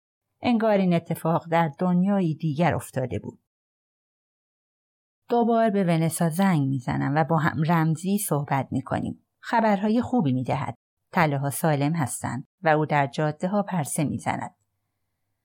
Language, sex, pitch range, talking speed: Persian, female, 125-190 Hz, 130 wpm